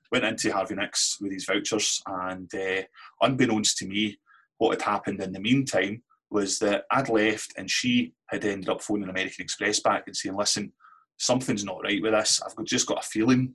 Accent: British